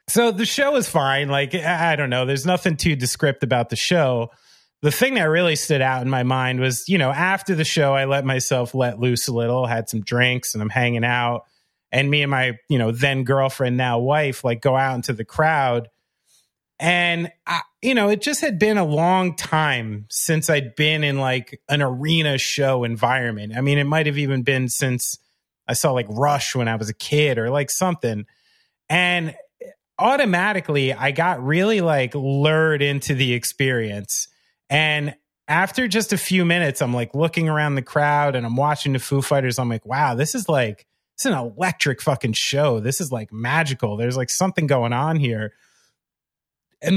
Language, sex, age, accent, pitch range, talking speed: English, male, 30-49, American, 125-165 Hz, 190 wpm